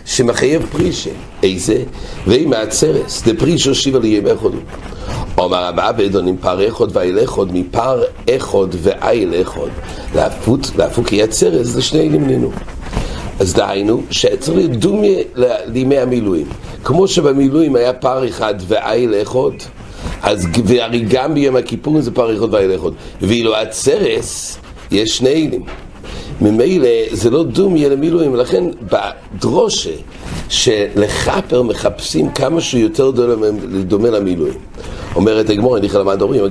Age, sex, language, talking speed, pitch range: 60-79, male, English, 125 wpm, 100-140 Hz